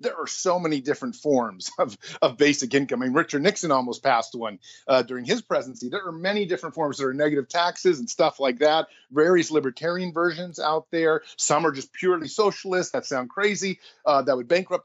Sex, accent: male, American